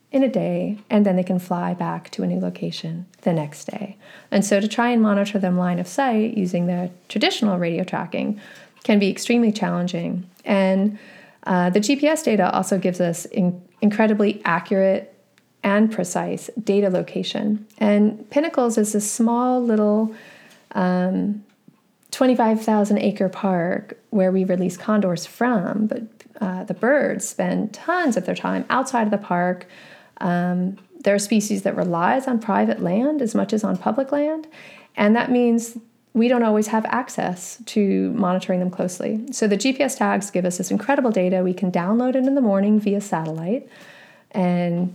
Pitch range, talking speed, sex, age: 180-225 Hz, 165 wpm, female, 30-49